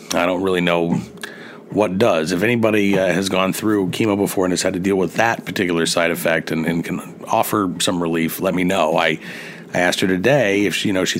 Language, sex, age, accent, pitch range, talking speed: English, male, 40-59, American, 85-100 Hz, 230 wpm